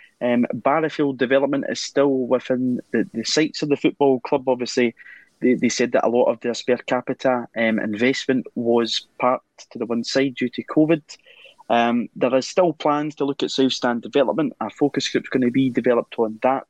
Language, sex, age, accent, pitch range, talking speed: English, male, 20-39, British, 115-145 Hz, 200 wpm